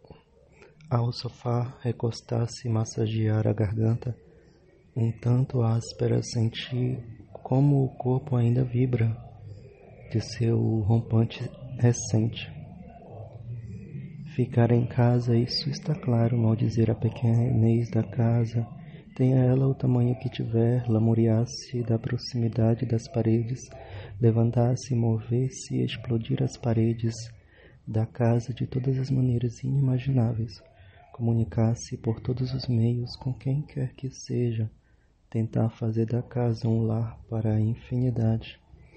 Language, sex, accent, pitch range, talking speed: Portuguese, male, Brazilian, 115-125 Hz, 115 wpm